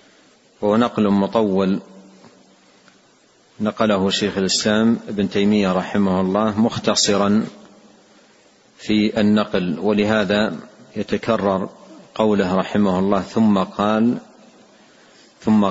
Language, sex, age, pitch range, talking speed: Arabic, male, 50-69, 100-110 Hz, 75 wpm